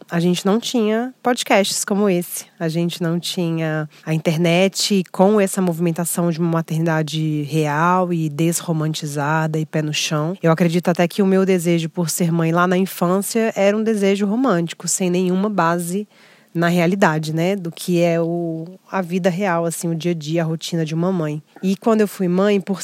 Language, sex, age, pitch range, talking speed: Portuguese, female, 20-39, 165-195 Hz, 190 wpm